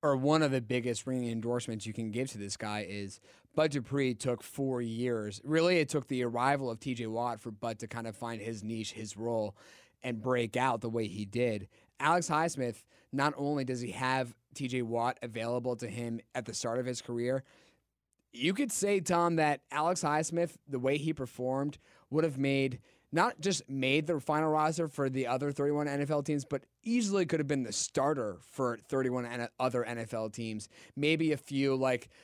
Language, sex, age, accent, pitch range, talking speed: English, male, 20-39, American, 115-145 Hz, 195 wpm